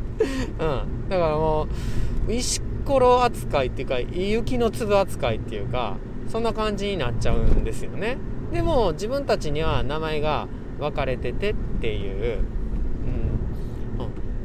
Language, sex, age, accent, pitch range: Japanese, male, 40-59, native, 115-180 Hz